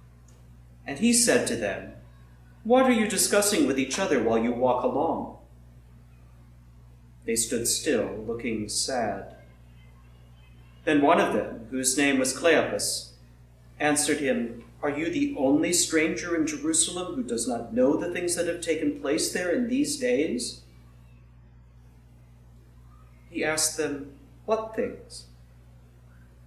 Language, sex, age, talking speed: English, male, 40-59, 130 wpm